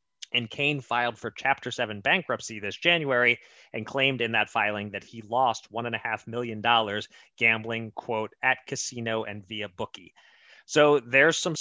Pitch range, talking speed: 110-145 Hz, 150 wpm